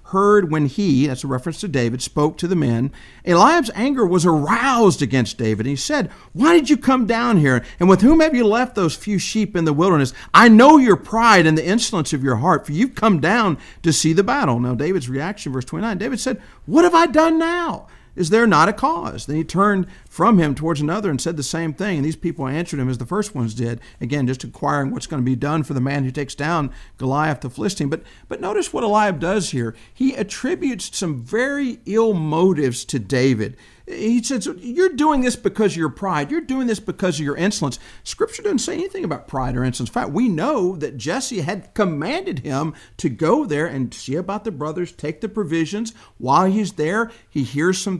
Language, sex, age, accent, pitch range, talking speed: English, male, 50-69, American, 140-220 Hz, 225 wpm